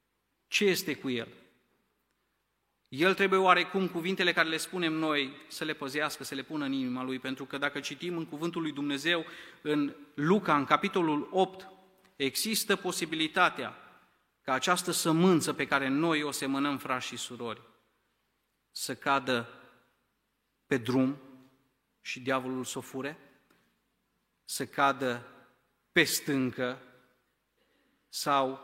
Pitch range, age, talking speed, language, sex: 130-165 Hz, 30-49, 130 wpm, Romanian, male